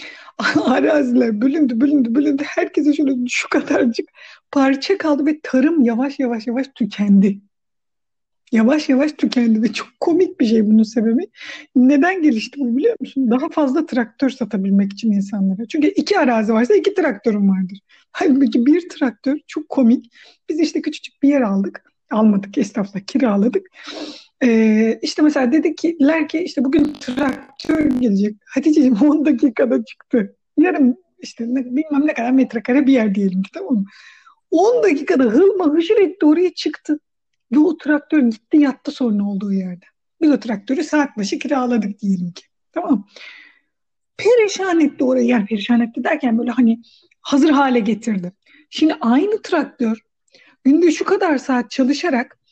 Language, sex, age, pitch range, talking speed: Turkish, female, 50-69, 235-315 Hz, 145 wpm